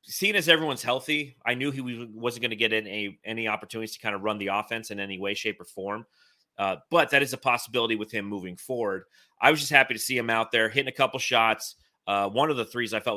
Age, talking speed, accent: 30-49, 260 wpm, American